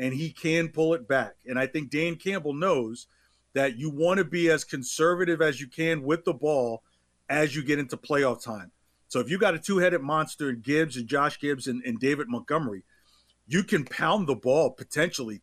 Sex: male